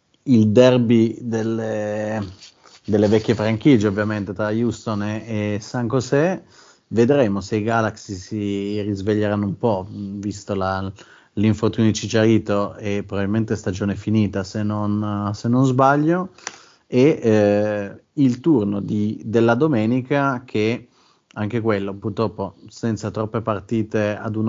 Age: 30-49